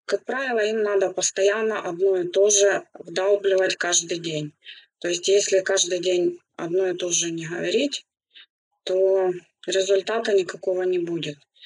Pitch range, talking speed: 180-215 Hz, 145 wpm